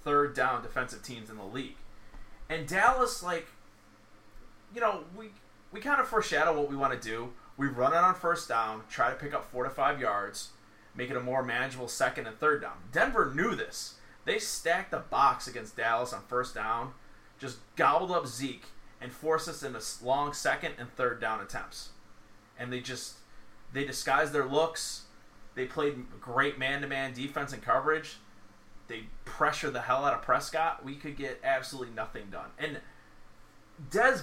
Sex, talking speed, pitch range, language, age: male, 175 wpm, 110-155 Hz, English, 30-49